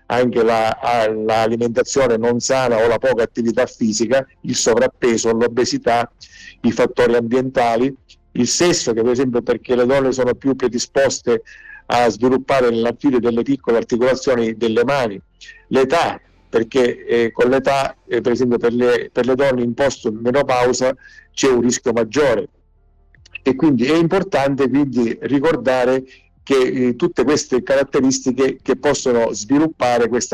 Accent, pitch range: native, 120-135 Hz